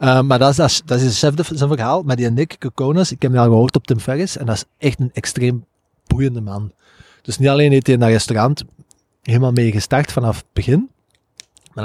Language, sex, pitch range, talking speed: Dutch, male, 115-140 Hz, 245 wpm